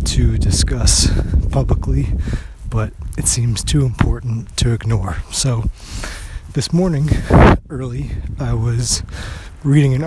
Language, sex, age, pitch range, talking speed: English, male, 20-39, 90-125 Hz, 105 wpm